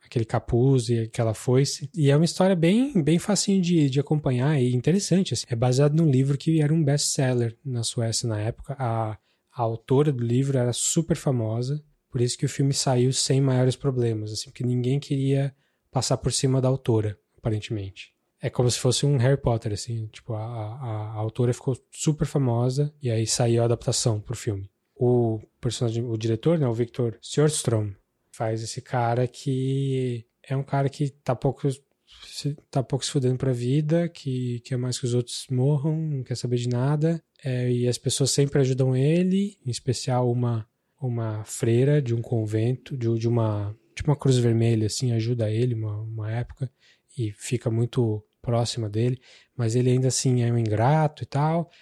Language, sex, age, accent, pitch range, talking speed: Portuguese, male, 20-39, Brazilian, 115-140 Hz, 185 wpm